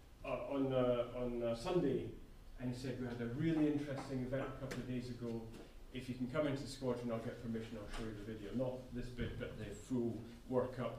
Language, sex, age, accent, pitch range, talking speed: English, male, 40-59, British, 125-145 Hz, 230 wpm